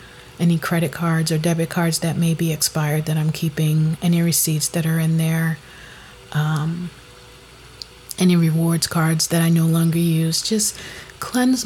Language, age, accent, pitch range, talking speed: English, 30-49, American, 160-185 Hz, 155 wpm